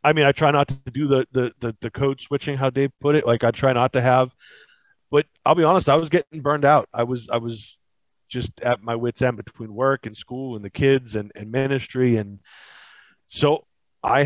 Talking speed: 225 wpm